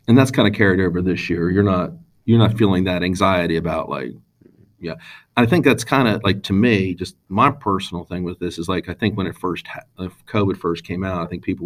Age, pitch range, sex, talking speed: 40-59, 90-105 Hz, male, 240 wpm